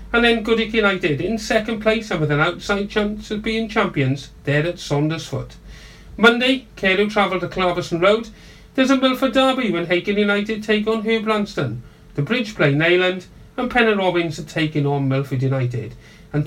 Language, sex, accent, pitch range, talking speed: English, male, British, 155-215 Hz, 175 wpm